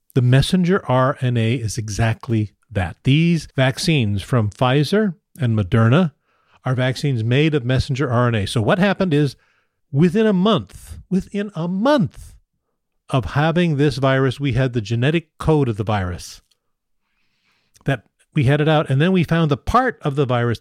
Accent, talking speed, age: American, 155 wpm, 40-59